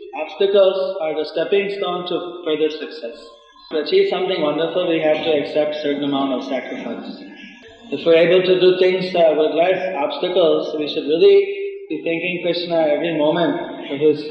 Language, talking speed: English, 170 wpm